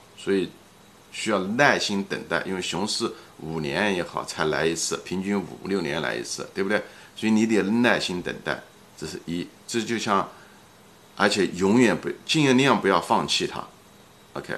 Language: Chinese